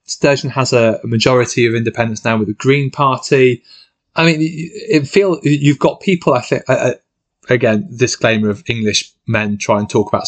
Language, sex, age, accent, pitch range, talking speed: English, male, 20-39, British, 115-140 Hz, 175 wpm